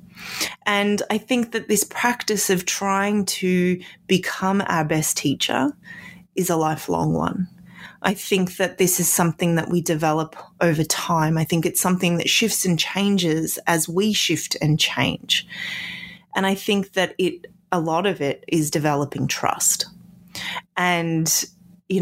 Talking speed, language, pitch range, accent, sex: 150 wpm, English, 160-195 Hz, Australian, female